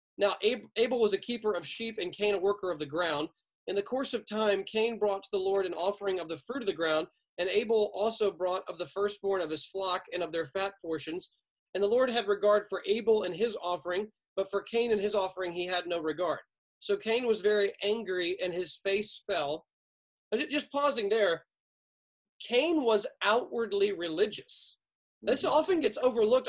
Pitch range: 190-240 Hz